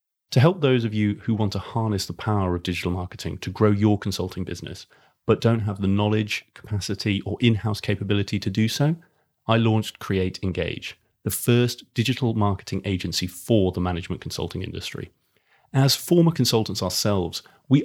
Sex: male